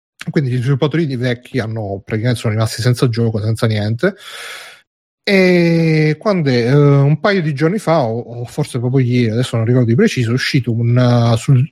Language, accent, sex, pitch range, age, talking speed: Italian, native, male, 115-140 Hz, 30-49, 180 wpm